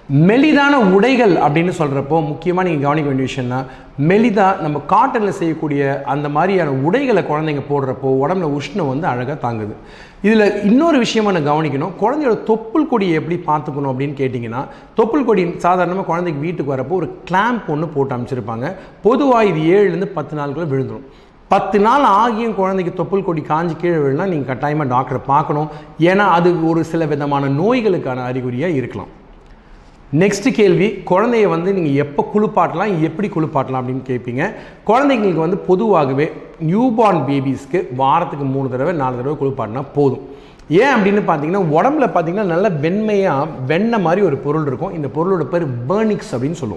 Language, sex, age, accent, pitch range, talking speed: Tamil, male, 30-49, native, 140-195 Hz, 145 wpm